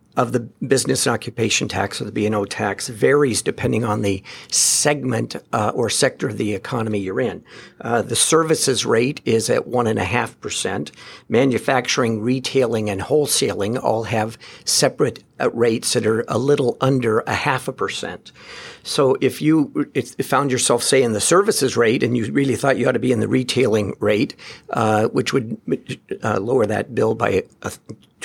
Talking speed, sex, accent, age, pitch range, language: 180 wpm, male, American, 50-69, 110-130 Hz, English